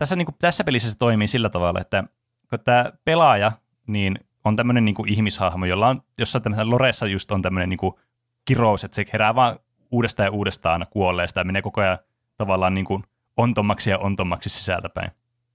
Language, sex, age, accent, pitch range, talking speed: Finnish, male, 30-49, native, 95-120 Hz, 185 wpm